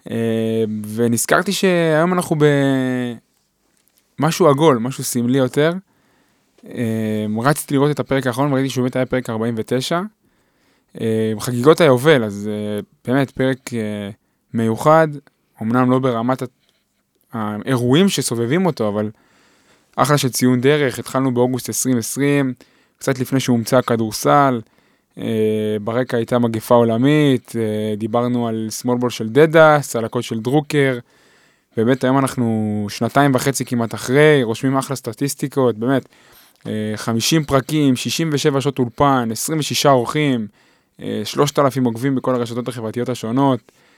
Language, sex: Hebrew, male